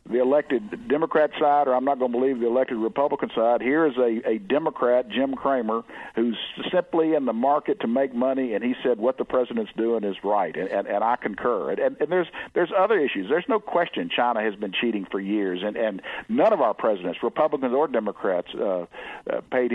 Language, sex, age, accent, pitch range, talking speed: English, male, 50-69, American, 110-150 Hz, 215 wpm